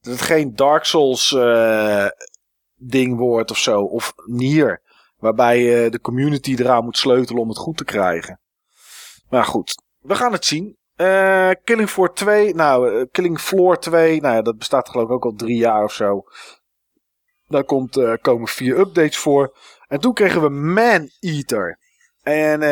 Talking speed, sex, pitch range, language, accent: 170 wpm, male, 130-190 Hz, Dutch, Dutch